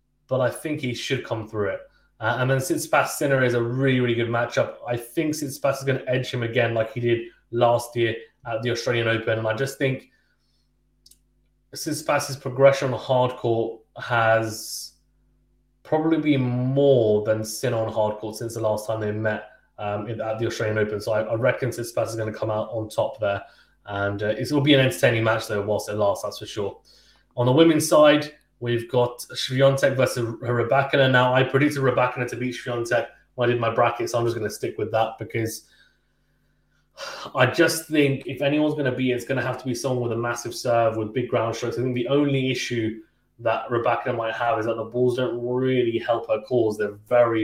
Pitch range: 110-130 Hz